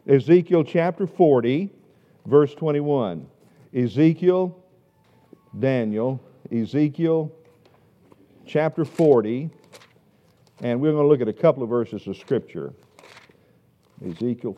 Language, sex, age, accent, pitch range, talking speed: English, male, 50-69, American, 120-155 Hz, 95 wpm